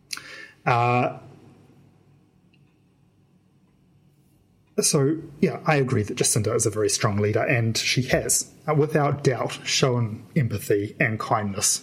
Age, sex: 30-49, male